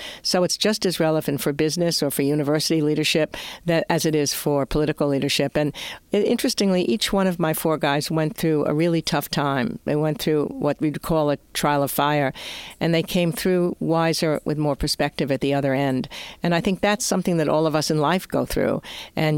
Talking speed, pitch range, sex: 210 wpm, 145-165 Hz, female